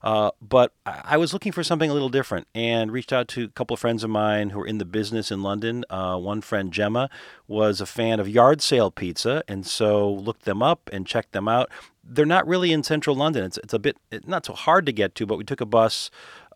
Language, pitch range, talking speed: English, 105-135 Hz, 250 wpm